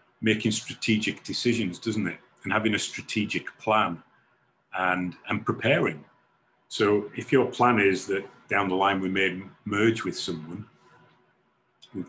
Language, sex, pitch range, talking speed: English, male, 95-125 Hz, 140 wpm